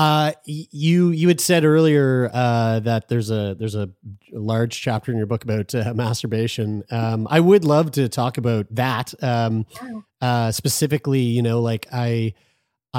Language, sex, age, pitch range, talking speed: English, male, 30-49, 110-135 Hz, 160 wpm